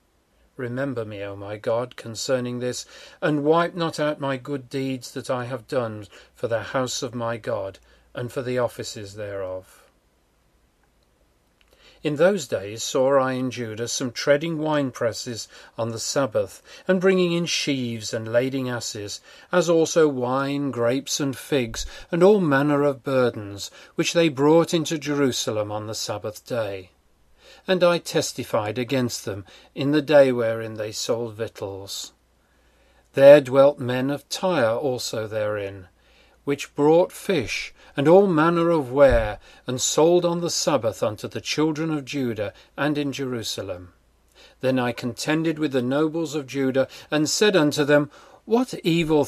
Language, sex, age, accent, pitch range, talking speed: English, male, 40-59, British, 115-150 Hz, 150 wpm